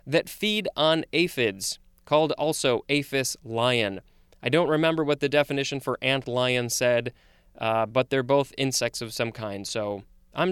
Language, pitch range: English, 120-155 Hz